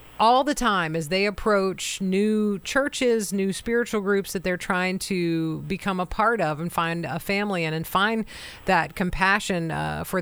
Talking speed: 175 wpm